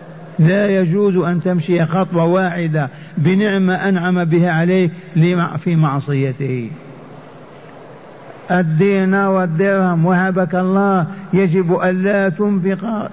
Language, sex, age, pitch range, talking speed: Arabic, male, 50-69, 165-190 Hz, 90 wpm